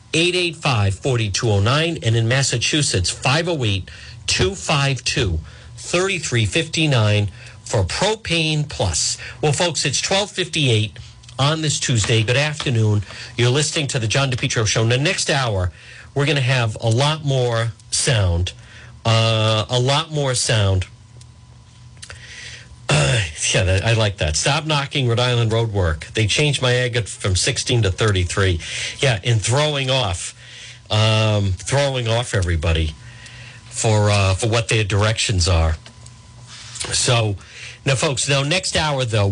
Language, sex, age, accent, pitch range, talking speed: English, male, 50-69, American, 110-140 Hz, 120 wpm